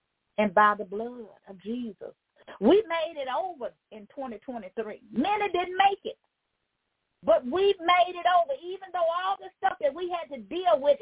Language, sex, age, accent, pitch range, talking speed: English, female, 40-59, American, 215-350 Hz, 185 wpm